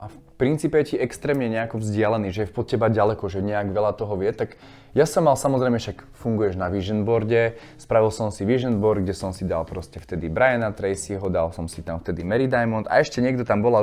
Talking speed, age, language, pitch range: 225 wpm, 20-39, Slovak, 100-120 Hz